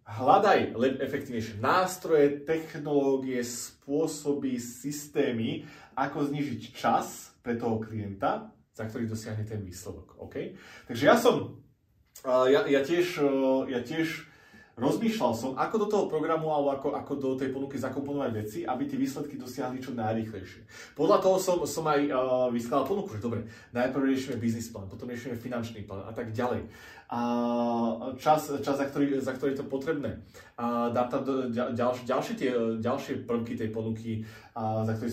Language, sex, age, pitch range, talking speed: Slovak, male, 30-49, 110-145 Hz, 140 wpm